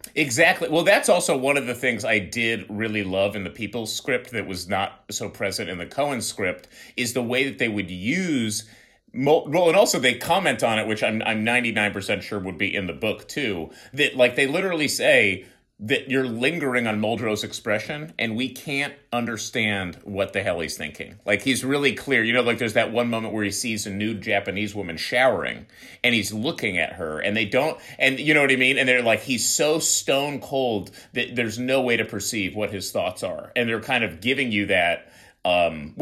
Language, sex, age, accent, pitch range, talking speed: English, male, 30-49, American, 105-130 Hz, 215 wpm